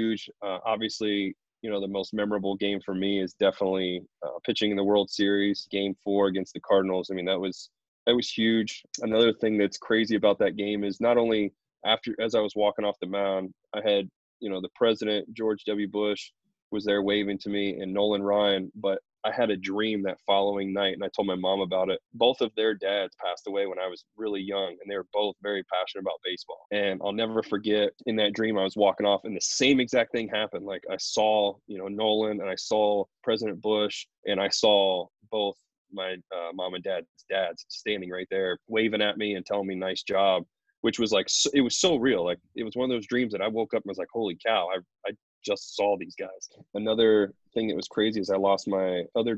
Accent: American